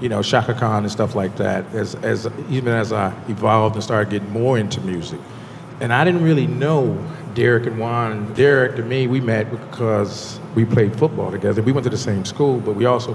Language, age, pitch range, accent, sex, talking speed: English, 40-59, 110-145 Hz, American, male, 215 wpm